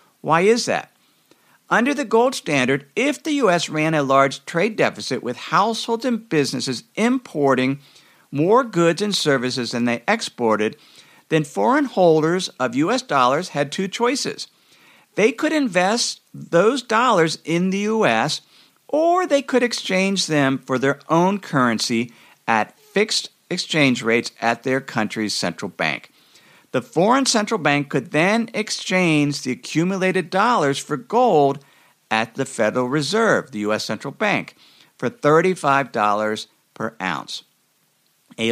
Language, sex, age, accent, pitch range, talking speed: English, male, 50-69, American, 135-215 Hz, 135 wpm